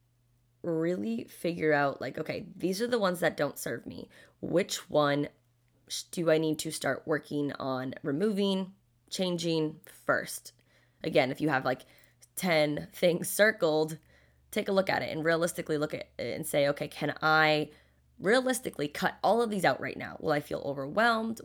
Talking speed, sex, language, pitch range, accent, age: 170 wpm, female, English, 125-165 Hz, American, 20-39